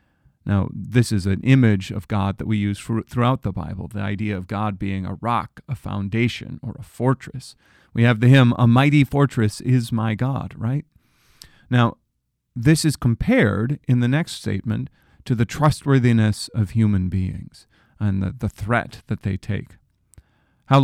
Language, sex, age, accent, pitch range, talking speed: English, male, 40-59, American, 100-125 Hz, 165 wpm